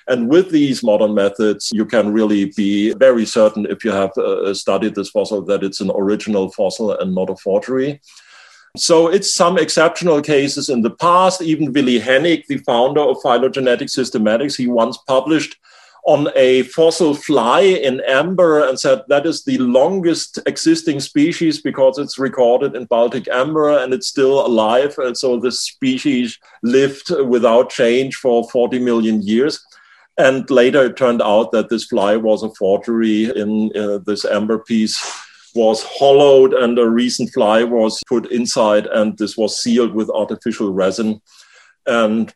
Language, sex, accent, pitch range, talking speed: English, male, German, 110-145 Hz, 160 wpm